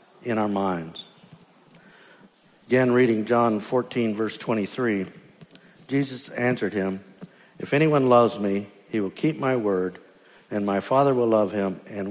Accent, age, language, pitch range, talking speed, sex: American, 60-79, English, 105-140 Hz, 140 wpm, male